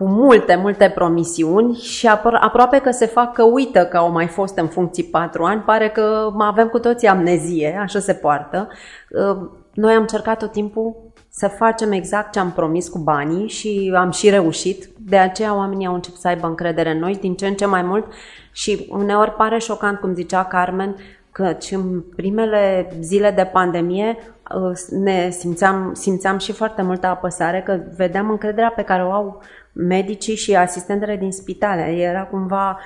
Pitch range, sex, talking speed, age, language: 180-210 Hz, female, 175 wpm, 30-49, Romanian